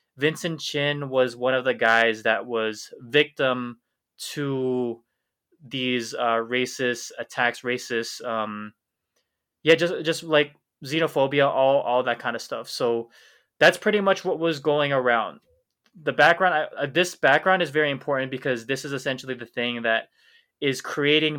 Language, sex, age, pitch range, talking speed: English, male, 20-39, 125-150 Hz, 150 wpm